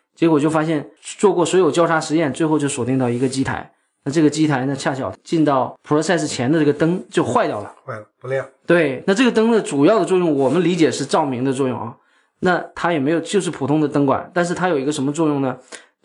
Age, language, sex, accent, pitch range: 20-39, Chinese, male, native, 135-160 Hz